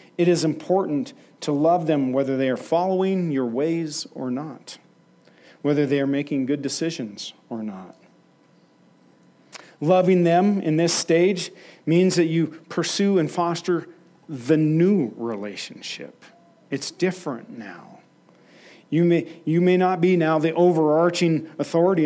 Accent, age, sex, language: American, 40-59, male, English